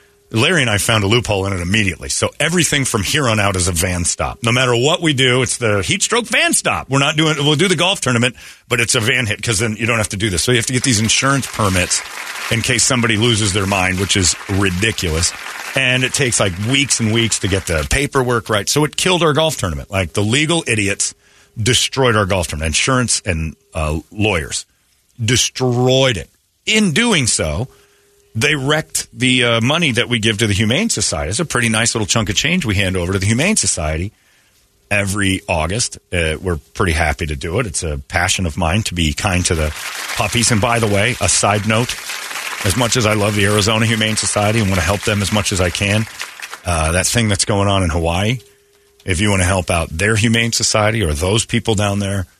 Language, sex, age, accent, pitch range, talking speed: English, male, 40-59, American, 90-120 Hz, 230 wpm